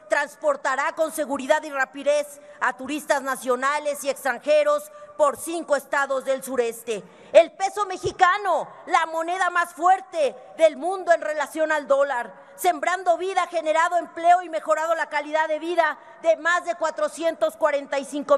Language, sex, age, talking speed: Spanish, female, 40-59, 135 wpm